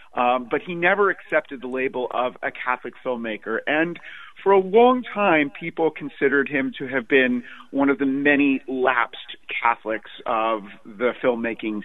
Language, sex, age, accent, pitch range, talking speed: English, male, 40-59, American, 130-175 Hz, 155 wpm